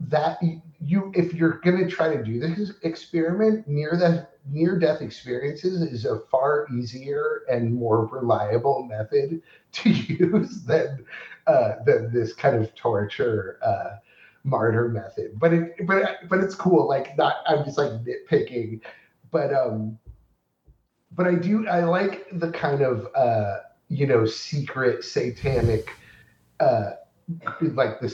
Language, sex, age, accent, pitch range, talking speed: English, male, 30-49, American, 110-160 Hz, 140 wpm